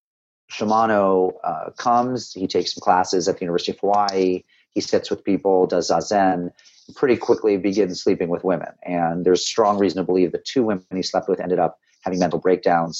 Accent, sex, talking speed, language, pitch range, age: American, male, 195 wpm, English, 85-100 Hz, 40-59